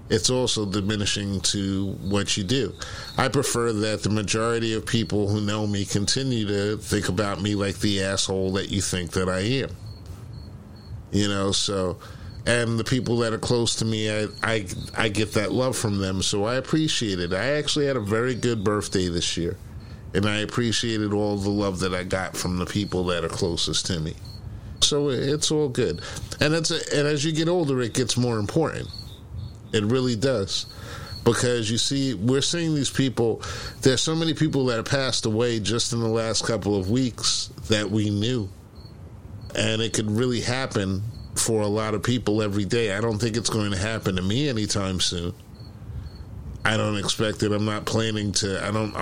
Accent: American